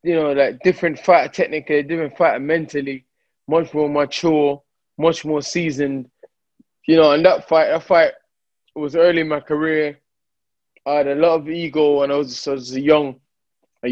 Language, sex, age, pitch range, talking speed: English, male, 20-39, 130-160 Hz, 190 wpm